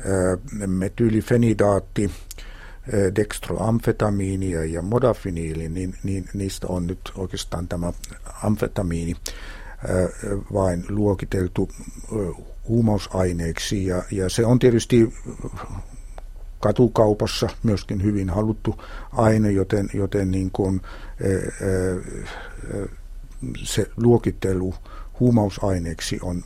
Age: 60-79